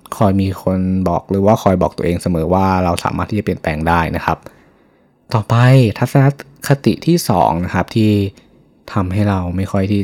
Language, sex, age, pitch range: Thai, male, 20-39, 90-115 Hz